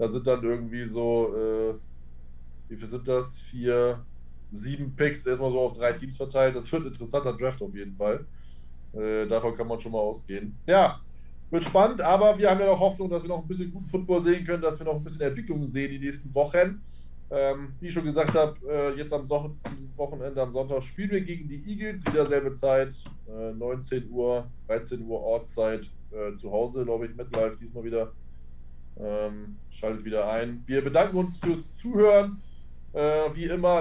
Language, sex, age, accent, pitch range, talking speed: German, male, 20-39, German, 115-150 Hz, 195 wpm